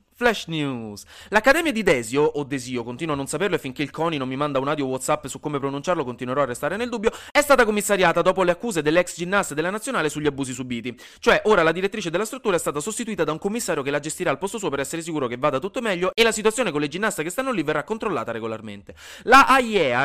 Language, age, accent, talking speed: Italian, 30-49, native, 240 wpm